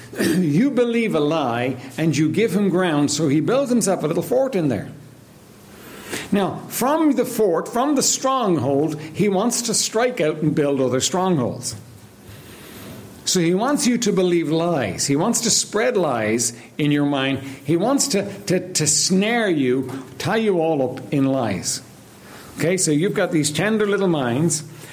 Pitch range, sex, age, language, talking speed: 125-200 Hz, male, 60-79, English, 170 wpm